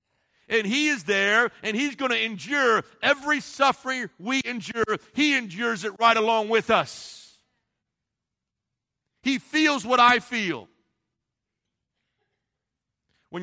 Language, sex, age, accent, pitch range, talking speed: English, male, 50-69, American, 195-260 Hz, 115 wpm